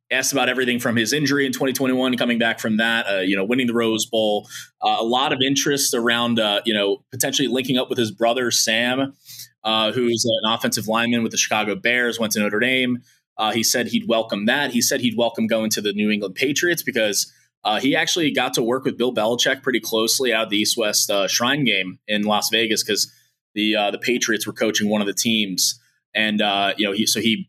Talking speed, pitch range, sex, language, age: 230 wpm, 110-130 Hz, male, English, 20-39